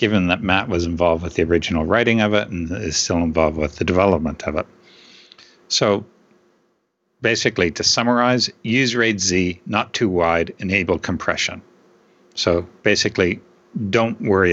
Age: 60-79